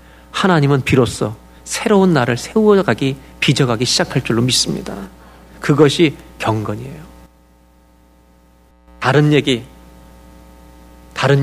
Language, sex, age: Korean, male, 40-59